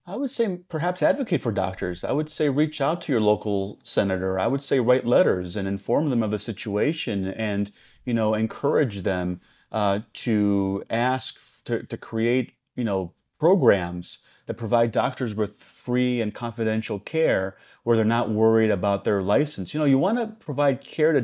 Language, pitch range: English, 105-135 Hz